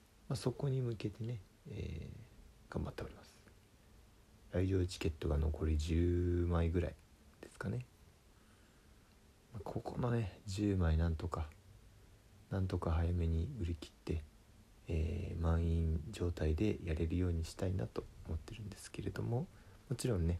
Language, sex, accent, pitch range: Japanese, male, native, 85-105 Hz